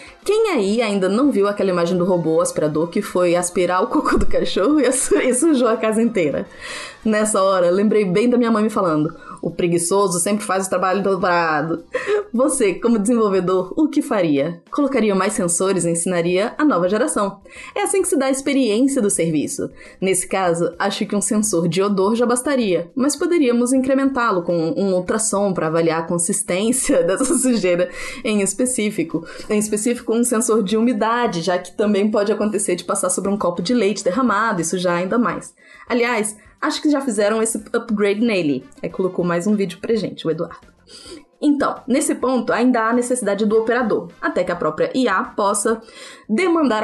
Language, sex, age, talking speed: Portuguese, female, 20-39, 180 wpm